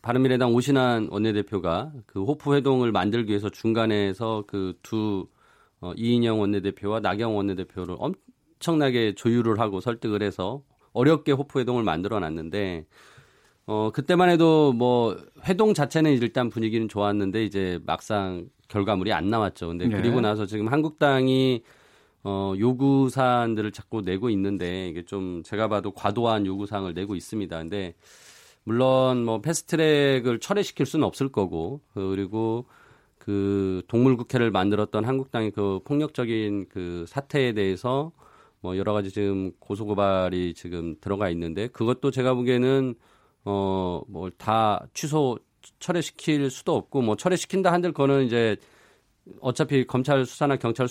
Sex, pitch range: male, 100-135 Hz